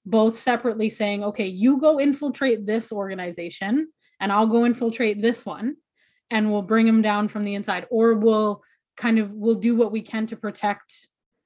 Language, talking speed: English, 180 wpm